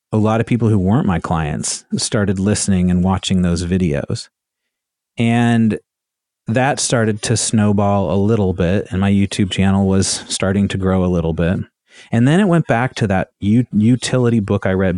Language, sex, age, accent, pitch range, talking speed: English, male, 30-49, American, 95-115 Hz, 180 wpm